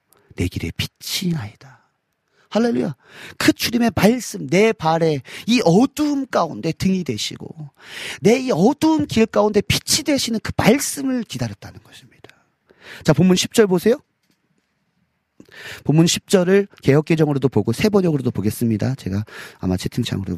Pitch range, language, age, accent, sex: 120-200 Hz, Korean, 40-59, native, male